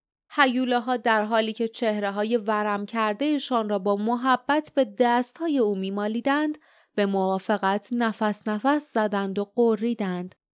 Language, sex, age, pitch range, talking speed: Persian, female, 30-49, 205-255 Hz, 125 wpm